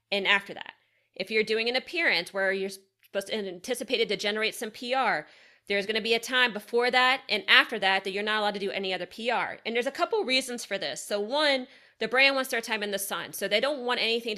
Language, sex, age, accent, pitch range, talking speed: English, female, 30-49, American, 200-245 Hz, 245 wpm